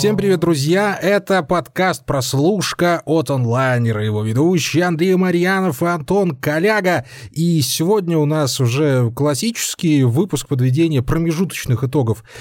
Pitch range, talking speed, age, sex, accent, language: 125-170 Hz, 115 wpm, 20-39, male, native, Russian